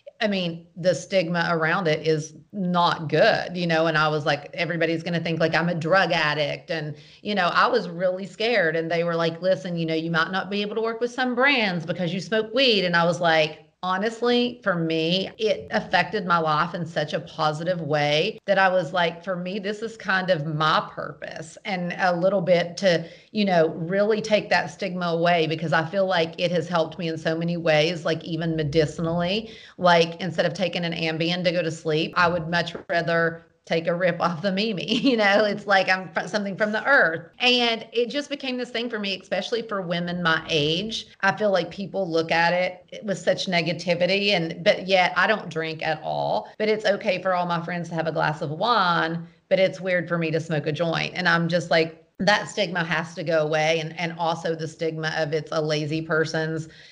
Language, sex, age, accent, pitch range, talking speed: English, female, 40-59, American, 160-195 Hz, 220 wpm